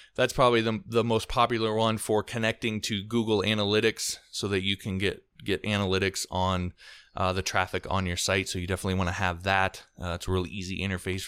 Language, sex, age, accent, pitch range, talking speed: English, male, 20-39, American, 90-110 Hz, 210 wpm